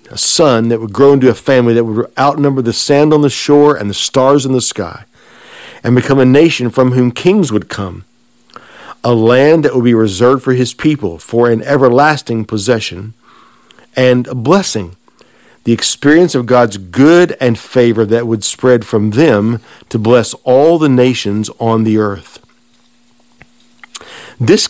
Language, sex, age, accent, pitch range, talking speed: English, male, 50-69, American, 110-130 Hz, 165 wpm